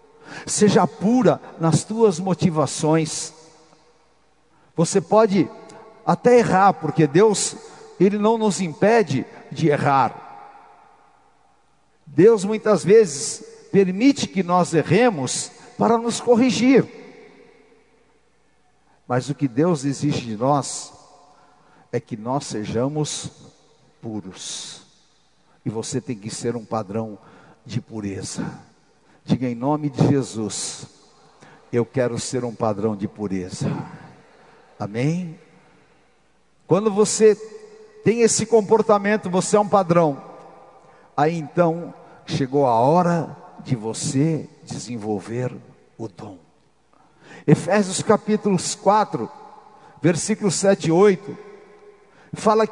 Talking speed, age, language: 100 wpm, 60-79, Portuguese